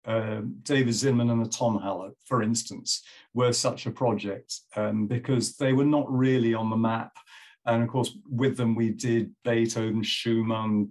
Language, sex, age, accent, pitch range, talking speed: English, male, 50-69, British, 110-130 Hz, 170 wpm